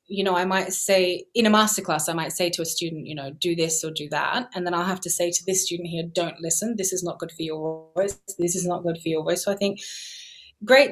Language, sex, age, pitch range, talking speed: English, female, 20-39, 175-215 Hz, 280 wpm